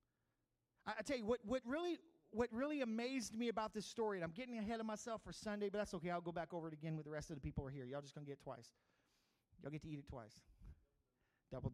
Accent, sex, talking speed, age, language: American, male, 270 wpm, 40-59, English